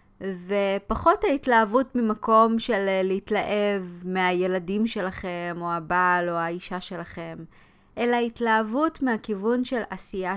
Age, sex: 20-39, female